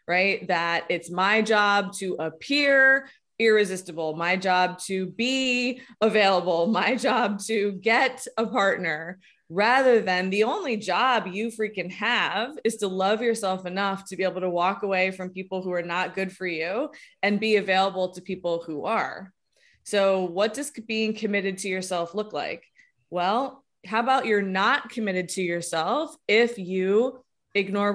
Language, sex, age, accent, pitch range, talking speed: English, female, 20-39, American, 185-225 Hz, 155 wpm